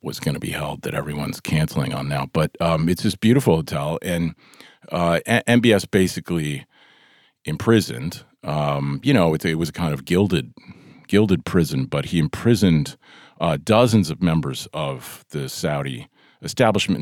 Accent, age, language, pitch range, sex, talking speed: American, 40-59, English, 75-100 Hz, male, 160 wpm